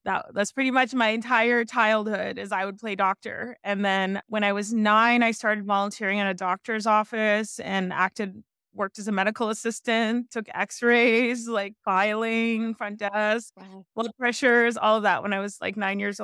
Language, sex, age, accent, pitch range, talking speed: English, female, 20-39, American, 200-230 Hz, 180 wpm